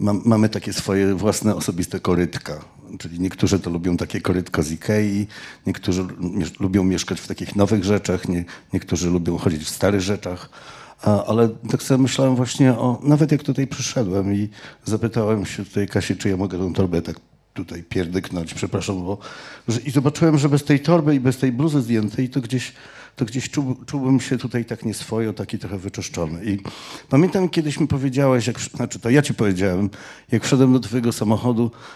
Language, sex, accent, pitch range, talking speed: Polish, male, native, 100-135 Hz, 180 wpm